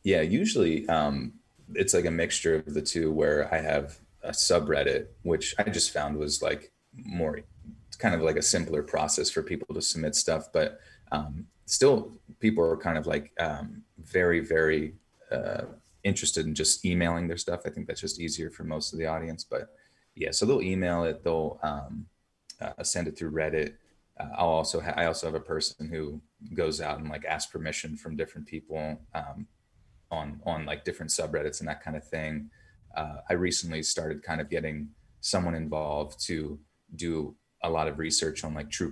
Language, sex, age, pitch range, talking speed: English, male, 30-49, 75-85 Hz, 190 wpm